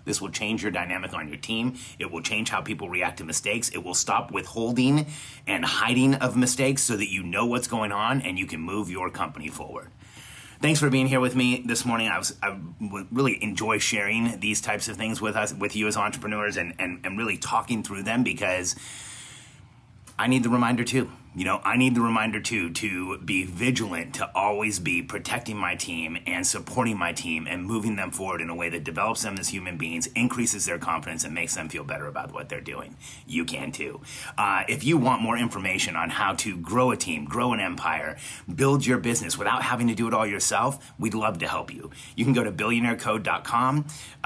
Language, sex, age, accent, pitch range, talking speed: English, male, 30-49, American, 105-125 Hz, 210 wpm